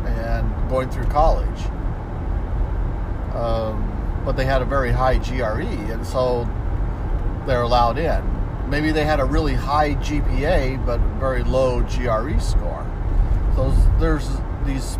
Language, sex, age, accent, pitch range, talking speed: English, male, 50-69, American, 90-125 Hz, 130 wpm